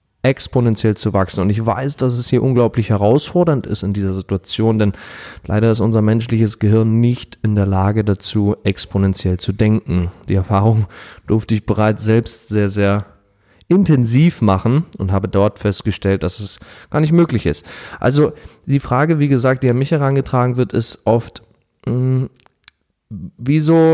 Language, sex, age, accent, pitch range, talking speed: German, male, 30-49, German, 105-135 Hz, 155 wpm